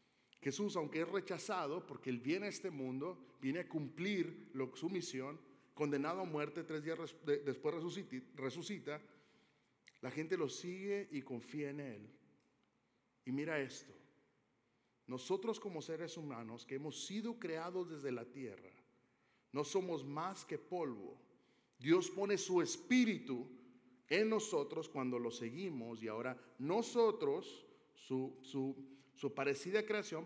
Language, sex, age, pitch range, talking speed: Spanish, male, 40-59, 125-170 Hz, 130 wpm